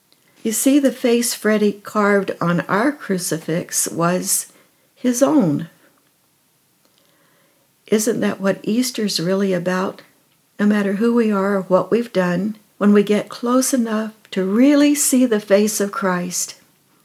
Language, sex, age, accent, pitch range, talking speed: English, female, 60-79, American, 180-225 Hz, 135 wpm